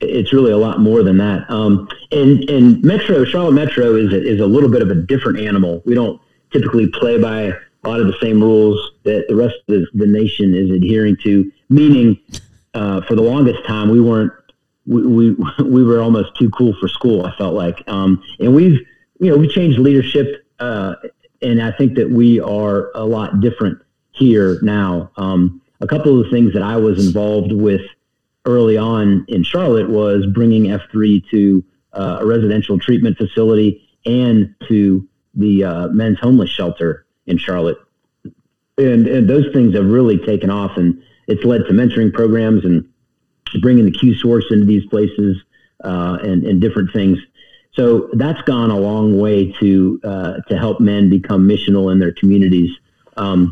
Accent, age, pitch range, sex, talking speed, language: American, 40-59, 100-120 Hz, male, 180 wpm, English